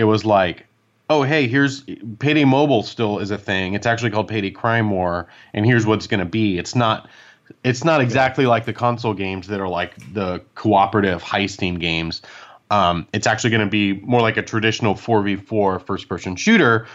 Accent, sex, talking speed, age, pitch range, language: American, male, 195 wpm, 30-49, 95-115 Hz, English